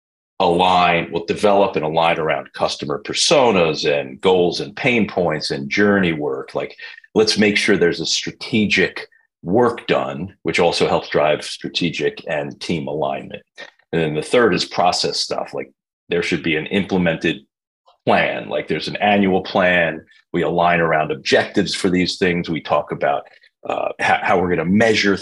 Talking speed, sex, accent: 165 wpm, male, American